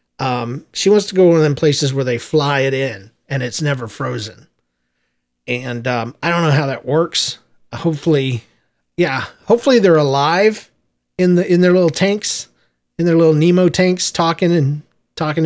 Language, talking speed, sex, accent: English, 180 wpm, male, American